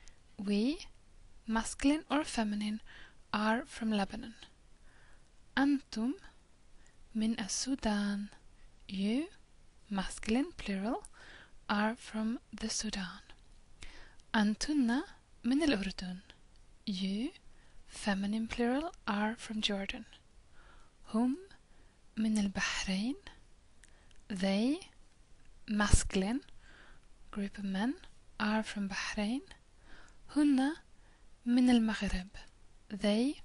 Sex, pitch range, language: female, 205-250 Hz, English